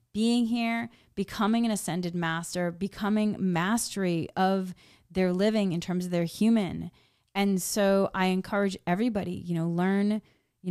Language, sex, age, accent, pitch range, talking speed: English, female, 30-49, American, 170-205 Hz, 140 wpm